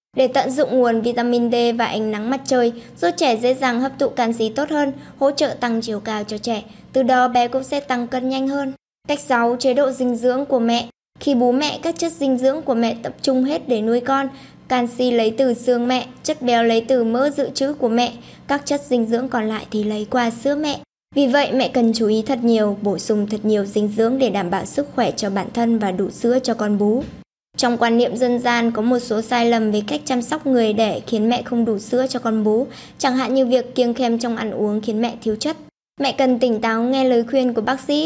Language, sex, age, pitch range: Vietnamese, male, 10-29, 225-265 Hz